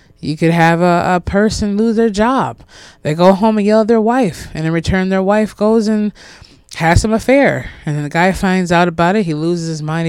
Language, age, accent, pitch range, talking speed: English, 20-39, American, 165-215 Hz, 230 wpm